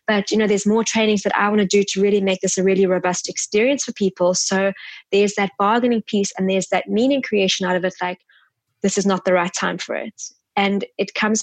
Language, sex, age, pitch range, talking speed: English, female, 20-39, 190-225 Hz, 240 wpm